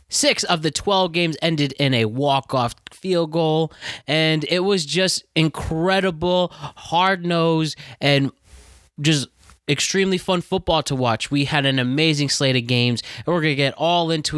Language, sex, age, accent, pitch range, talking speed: English, male, 20-39, American, 120-150 Hz, 155 wpm